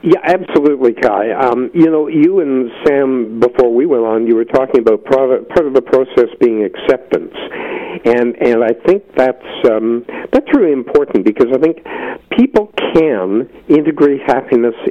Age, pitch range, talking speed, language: 60-79, 115-160 Hz, 155 wpm, English